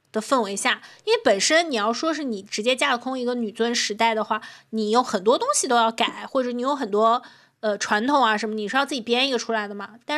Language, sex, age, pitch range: Chinese, female, 20-39, 220-270 Hz